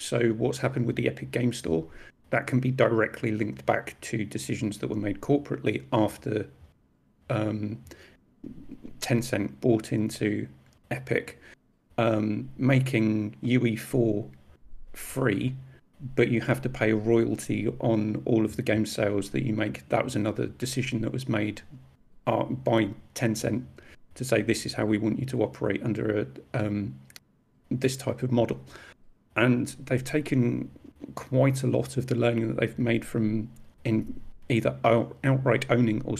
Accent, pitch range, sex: British, 110-130 Hz, male